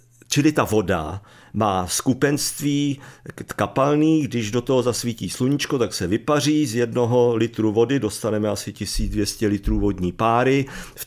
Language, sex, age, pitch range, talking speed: Czech, male, 50-69, 105-145 Hz, 135 wpm